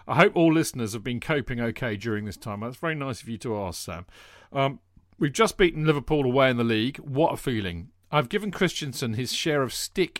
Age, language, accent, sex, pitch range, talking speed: 40-59, English, British, male, 105-150 Hz, 225 wpm